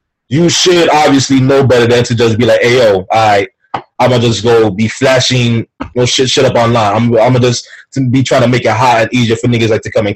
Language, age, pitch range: English, 20-39, 115-150 Hz